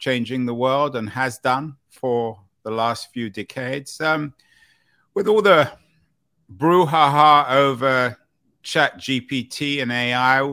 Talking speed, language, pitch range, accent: 120 wpm, English, 110-140 Hz, British